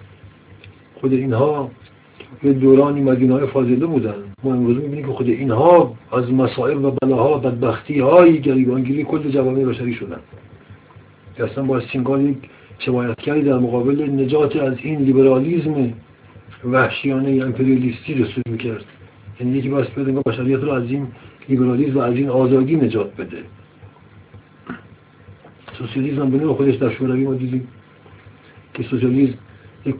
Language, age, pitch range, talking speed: Persian, 50-69, 120-145 Hz, 130 wpm